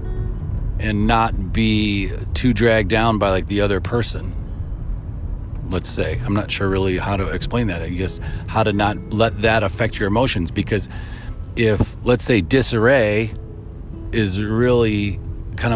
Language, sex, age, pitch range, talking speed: English, male, 40-59, 100-120 Hz, 150 wpm